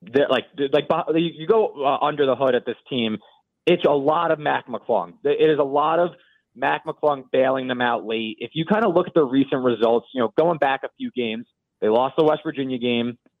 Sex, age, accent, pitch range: male, 30-49, American, 120-155 Hz